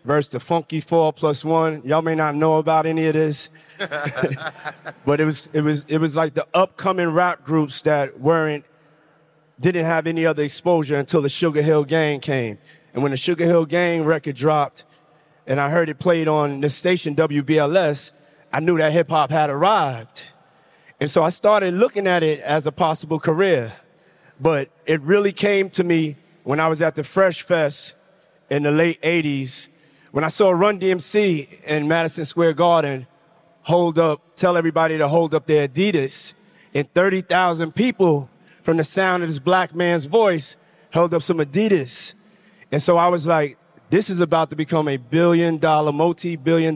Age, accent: 30-49, American